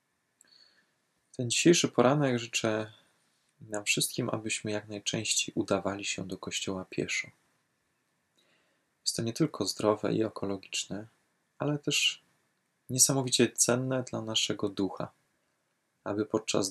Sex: male